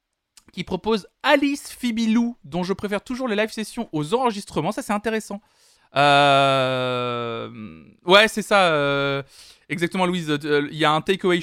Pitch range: 140-205 Hz